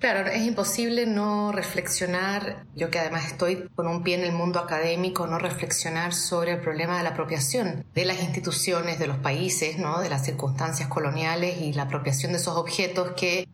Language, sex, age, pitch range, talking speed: English, female, 30-49, 165-185 Hz, 185 wpm